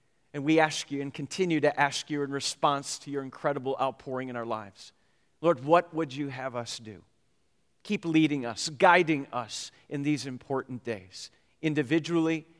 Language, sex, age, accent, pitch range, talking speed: English, male, 50-69, American, 145-205 Hz, 165 wpm